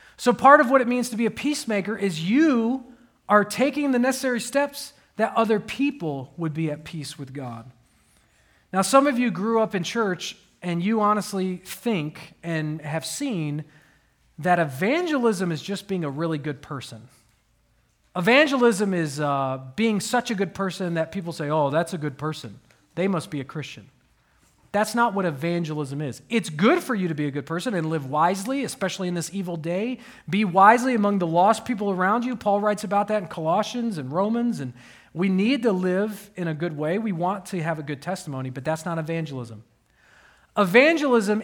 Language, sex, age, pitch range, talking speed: English, male, 40-59, 155-225 Hz, 190 wpm